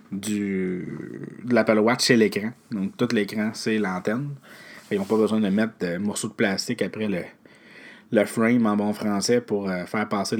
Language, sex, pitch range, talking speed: French, male, 105-135 Hz, 180 wpm